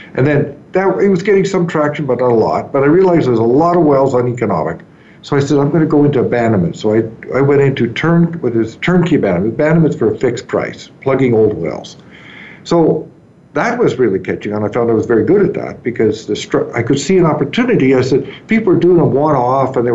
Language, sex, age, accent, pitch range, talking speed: English, male, 60-79, American, 120-165 Hz, 245 wpm